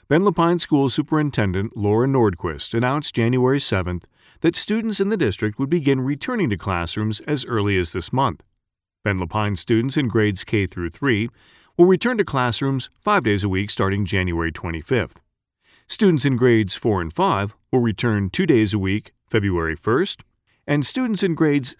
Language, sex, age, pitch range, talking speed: English, male, 40-59, 95-150 Hz, 170 wpm